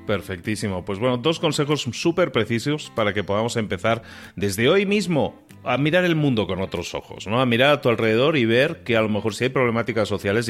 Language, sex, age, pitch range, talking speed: Spanish, male, 30-49, 95-120 Hz, 210 wpm